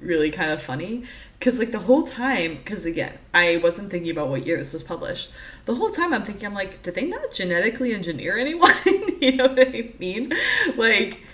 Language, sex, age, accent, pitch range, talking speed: English, female, 20-39, American, 155-200 Hz, 205 wpm